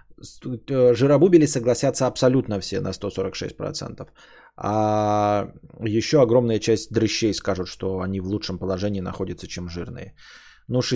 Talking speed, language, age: 115 wpm, Bulgarian, 20-39